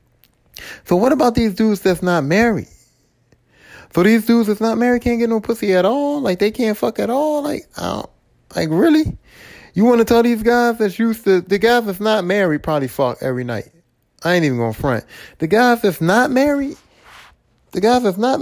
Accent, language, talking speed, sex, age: American, English, 210 wpm, male, 30-49